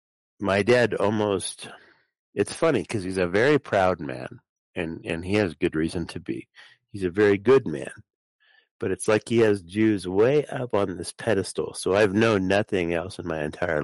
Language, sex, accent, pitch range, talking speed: English, male, American, 85-115 Hz, 180 wpm